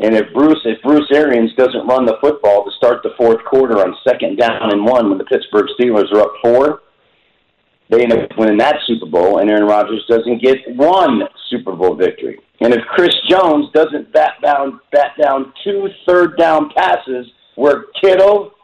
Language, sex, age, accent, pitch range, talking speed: English, male, 50-69, American, 110-170 Hz, 185 wpm